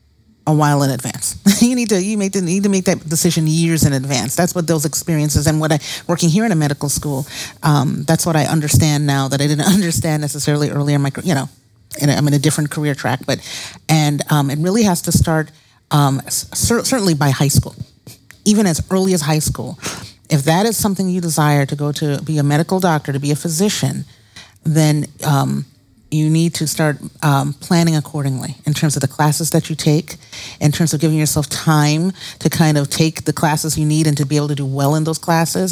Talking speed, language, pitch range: 215 wpm, English, 145-180 Hz